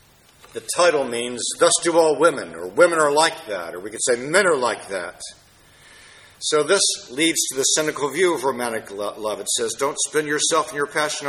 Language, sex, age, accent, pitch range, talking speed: English, male, 60-79, American, 130-200 Hz, 200 wpm